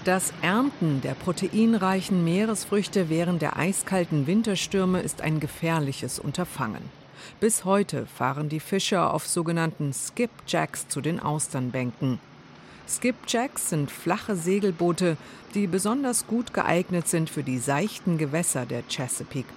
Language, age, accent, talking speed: German, 50-69, German, 120 wpm